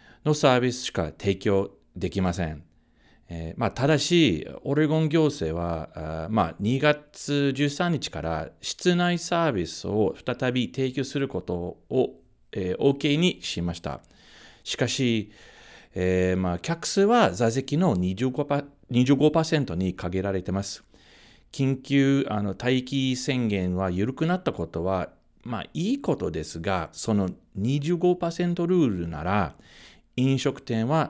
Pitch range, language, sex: 90-145 Hz, Japanese, male